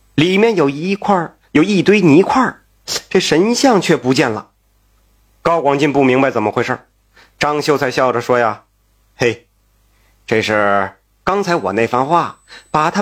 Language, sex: Chinese, male